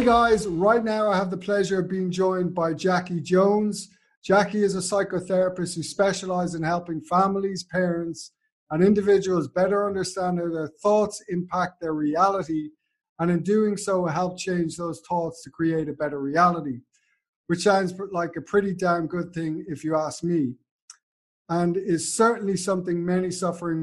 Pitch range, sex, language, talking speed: 160-195 Hz, male, English, 165 wpm